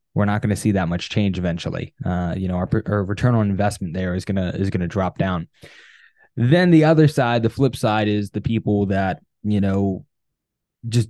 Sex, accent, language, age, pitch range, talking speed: male, American, English, 10-29, 95-115 Hz, 215 wpm